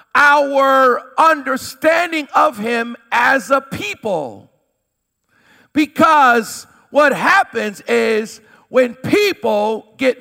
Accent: American